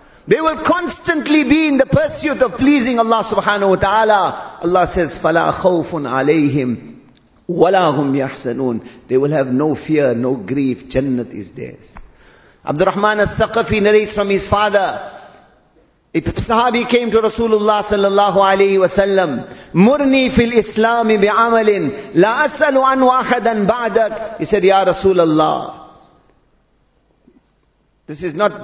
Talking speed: 130 wpm